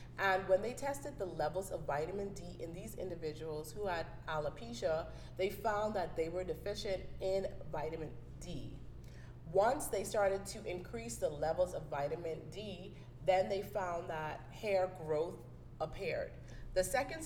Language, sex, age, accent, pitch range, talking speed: English, female, 30-49, American, 155-195 Hz, 150 wpm